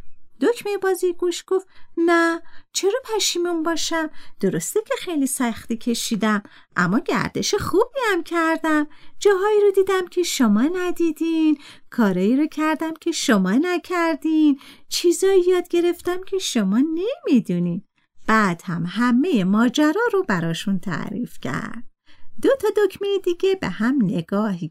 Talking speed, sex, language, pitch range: 125 wpm, female, Persian, 230-365 Hz